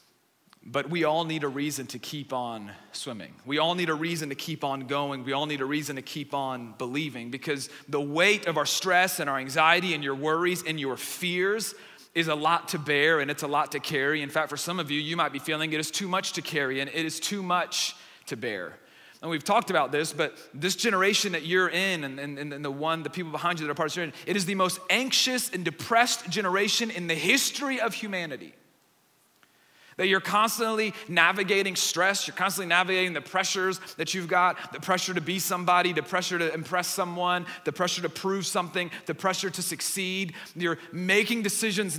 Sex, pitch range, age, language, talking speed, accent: male, 155-185 Hz, 30-49, English, 215 wpm, American